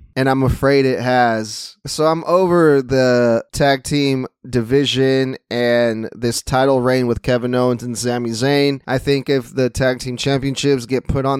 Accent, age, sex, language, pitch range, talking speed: American, 20-39, male, English, 125-145 Hz, 170 wpm